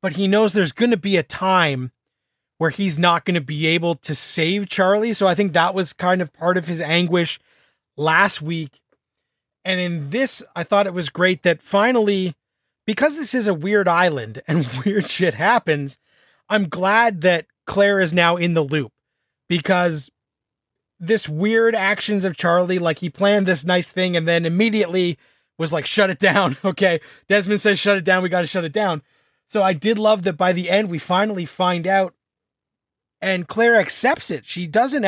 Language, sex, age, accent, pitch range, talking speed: English, male, 30-49, American, 165-195 Hz, 190 wpm